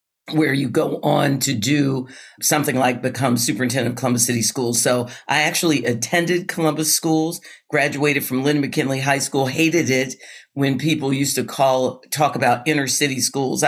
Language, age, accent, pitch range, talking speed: English, 50-69, American, 125-150 Hz, 165 wpm